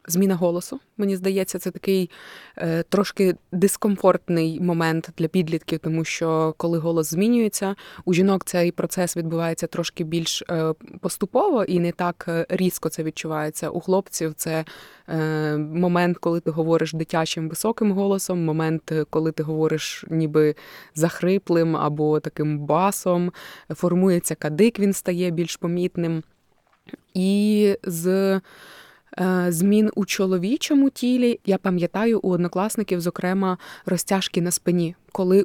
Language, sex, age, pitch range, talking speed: Ukrainian, female, 20-39, 165-190 Hz, 120 wpm